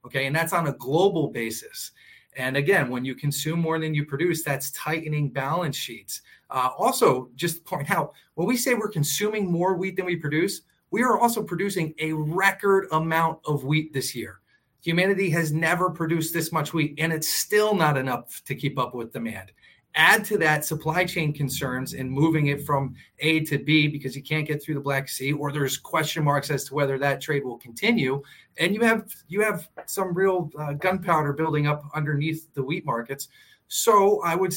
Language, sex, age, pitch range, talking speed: English, male, 30-49, 140-180 Hz, 200 wpm